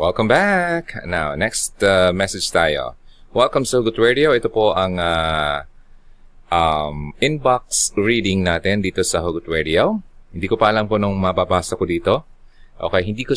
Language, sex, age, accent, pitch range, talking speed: Filipino, male, 20-39, native, 95-145 Hz, 155 wpm